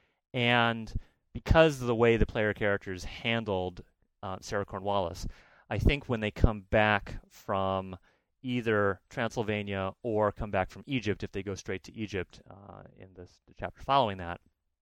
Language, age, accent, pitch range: English, 30-49, American, 90-115 Hz